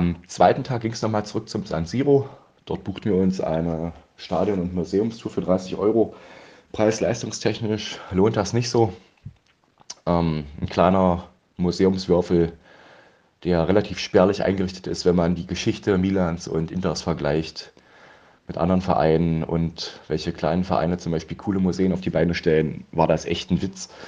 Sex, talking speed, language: male, 155 wpm, German